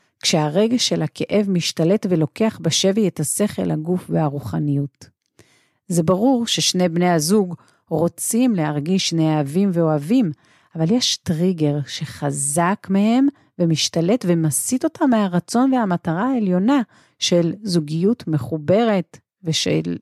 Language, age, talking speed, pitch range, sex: Hebrew, 40-59, 100 wpm, 155-200 Hz, female